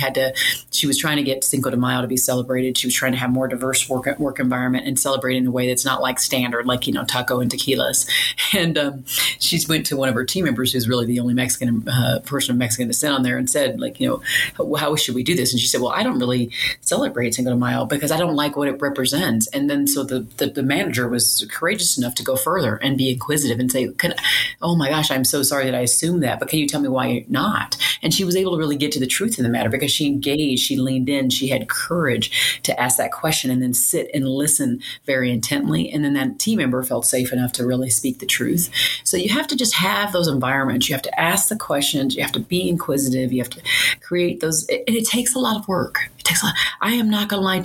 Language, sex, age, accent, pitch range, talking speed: English, female, 30-49, American, 125-160 Hz, 265 wpm